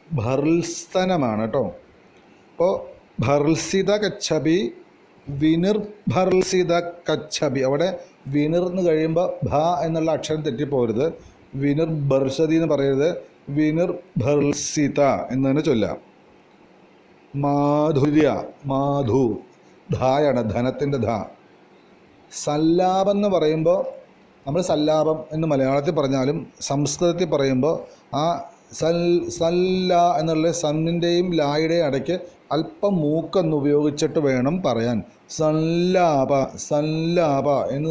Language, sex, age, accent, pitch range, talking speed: Malayalam, male, 40-59, native, 140-170 Hz, 80 wpm